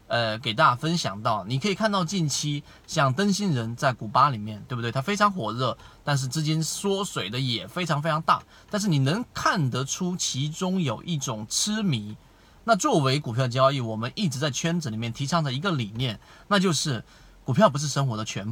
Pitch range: 125-175 Hz